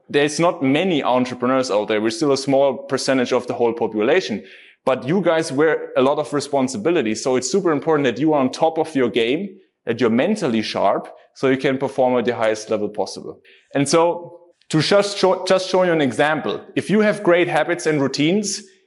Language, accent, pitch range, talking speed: English, German, 140-180 Hz, 205 wpm